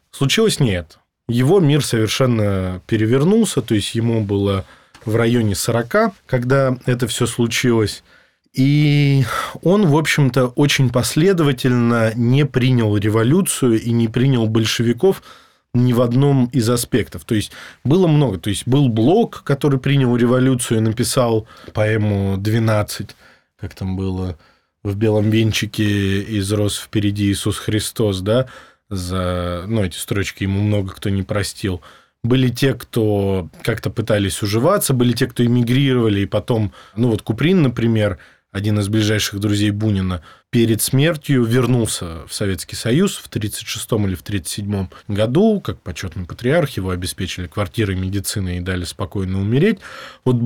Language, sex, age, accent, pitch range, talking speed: Russian, male, 20-39, native, 100-130 Hz, 135 wpm